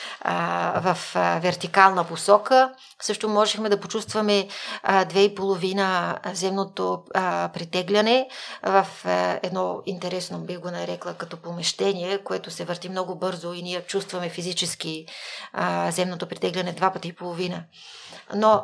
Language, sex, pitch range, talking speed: Bulgarian, female, 180-205 Hz, 110 wpm